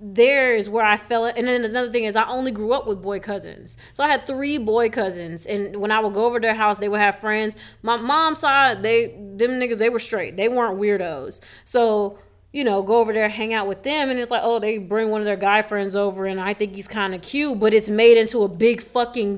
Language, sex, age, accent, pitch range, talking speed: English, female, 20-39, American, 200-245 Hz, 260 wpm